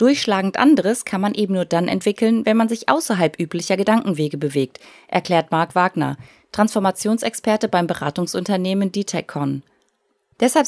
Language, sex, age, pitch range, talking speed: German, female, 30-49, 170-225 Hz, 130 wpm